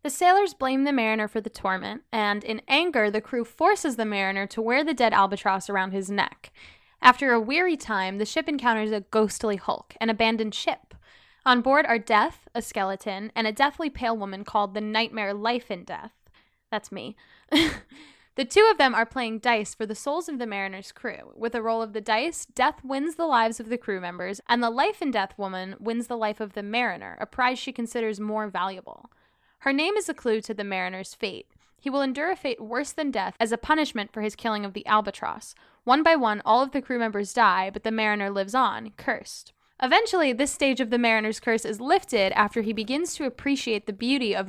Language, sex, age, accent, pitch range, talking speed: English, female, 10-29, American, 210-270 Hz, 215 wpm